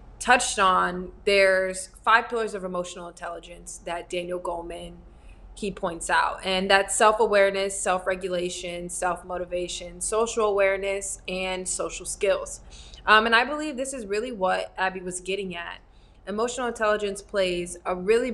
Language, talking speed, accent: English, 135 wpm, American